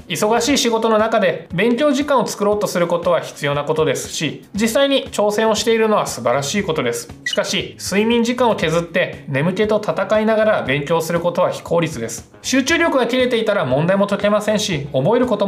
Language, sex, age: Japanese, male, 20-39